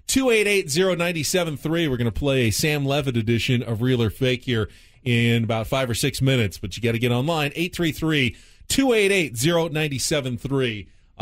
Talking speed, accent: 145 wpm, American